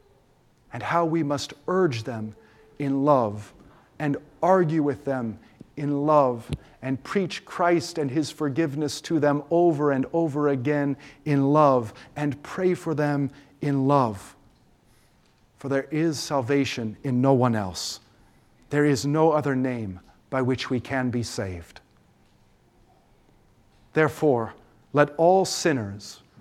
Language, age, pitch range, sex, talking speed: English, 40-59, 120-160 Hz, male, 130 wpm